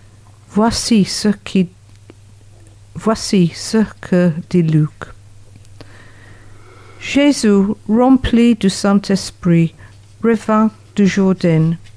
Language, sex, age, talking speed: French, female, 60-79, 75 wpm